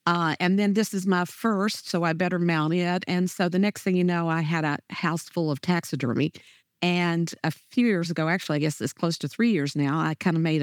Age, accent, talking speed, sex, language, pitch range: 50-69, American, 250 wpm, female, English, 160-190 Hz